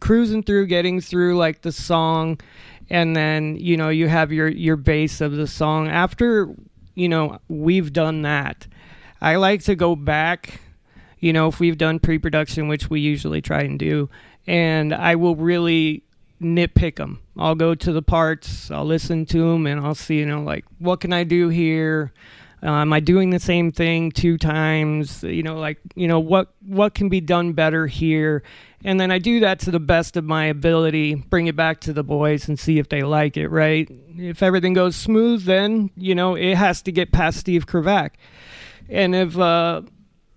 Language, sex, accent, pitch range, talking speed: English, male, American, 150-180 Hz, 195 wpm